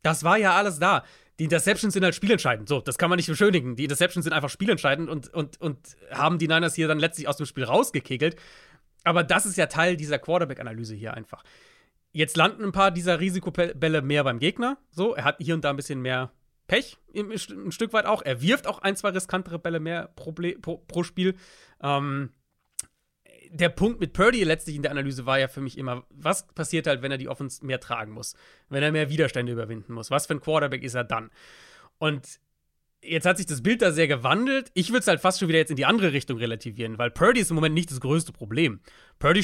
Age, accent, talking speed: 30-49, German, 220 wpm